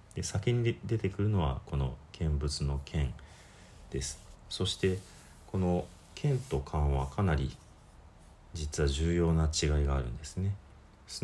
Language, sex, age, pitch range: Japanese, male, 40-59, 70-95 Hz